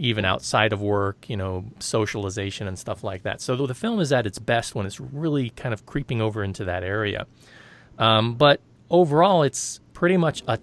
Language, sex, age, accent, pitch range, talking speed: English, male, 30-49, American, 105-130 Hz, 200 wpm